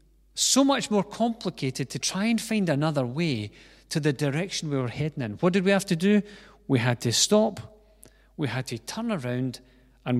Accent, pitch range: British, 130-185 Hz